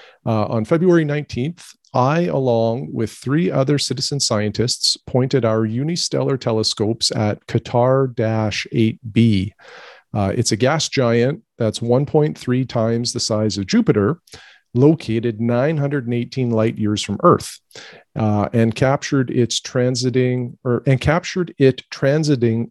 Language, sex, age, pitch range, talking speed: English, male, 40-59, 110-135 Hz, 120 wpm